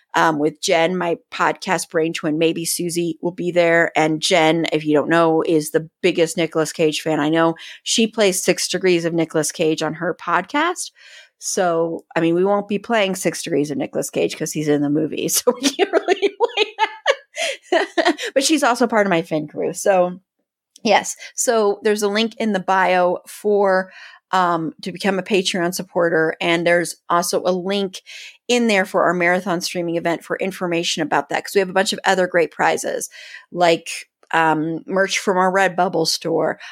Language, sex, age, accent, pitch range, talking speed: English, female, 30-49, American, 165-205 Hz, 190 wpm